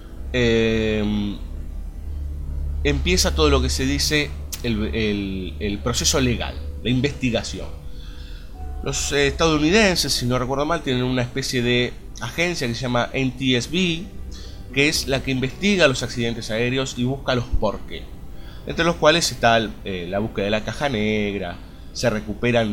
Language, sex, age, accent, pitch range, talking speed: Spanish, male, 30-49, Argentinian, 85-140 Hz, 150 wpm